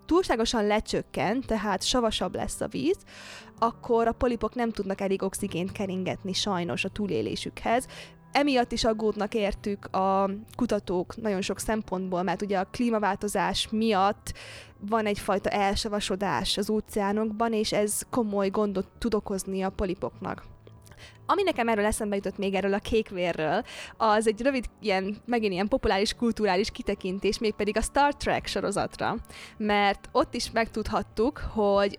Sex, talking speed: female, 135 wpm